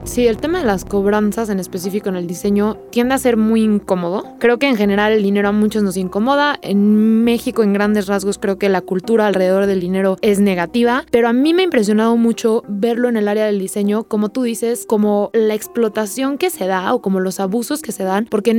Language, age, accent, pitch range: Spanish, 20-39, Mexican, 205-245 Hz